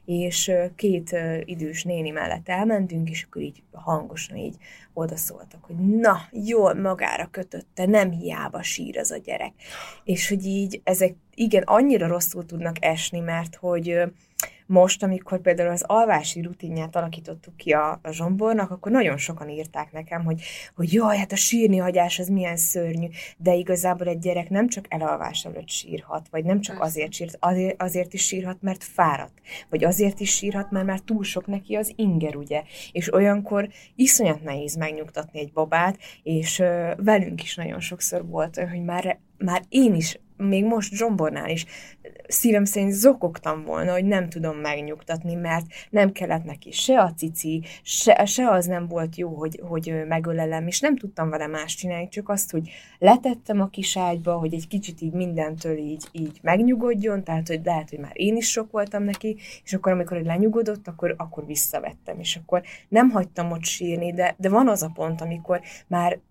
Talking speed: 175 wpm